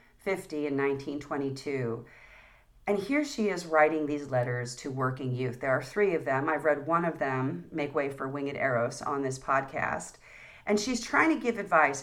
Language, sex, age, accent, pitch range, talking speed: English, female, 40-59, American, 145-205 Hz, 185 wpm